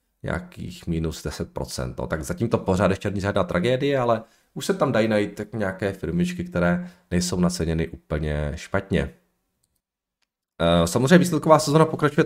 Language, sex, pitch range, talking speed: Czech, male, 90-115 Hz, 135 wpm